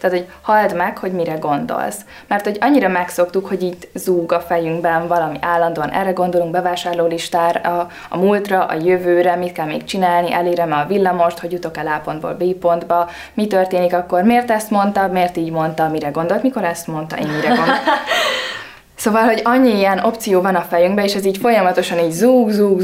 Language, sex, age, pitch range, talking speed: Hungarian, female, 20-39, 165-195 Hz, 190 wpm